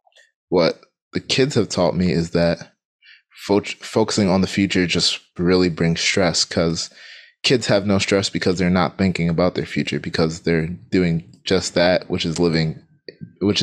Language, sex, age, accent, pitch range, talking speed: English, male, 20-39, American, 90-105 Hz, 165 wpm